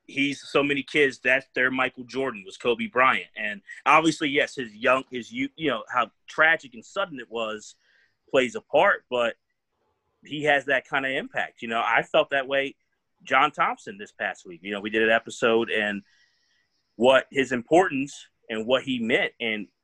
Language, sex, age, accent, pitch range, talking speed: English, male, 30-49, American, 110-130 Hz, 185 wpm